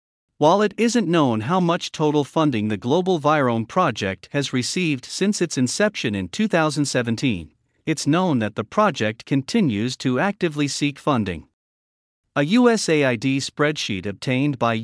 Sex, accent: male, American